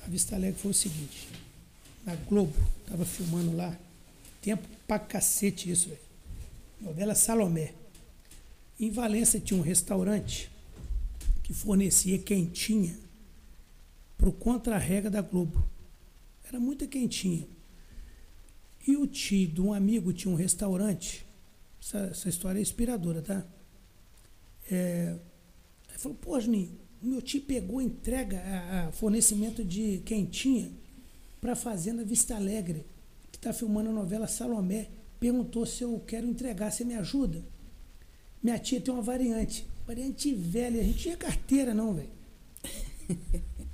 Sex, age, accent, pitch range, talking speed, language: male, 60-79, Brazilian, 180-235 Hz, 130 wpm, Portuguese